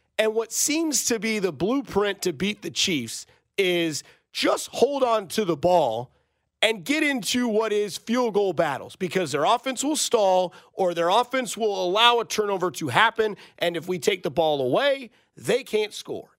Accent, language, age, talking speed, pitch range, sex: American, English, 40-59, 185 wpm, 185-235 Hz, male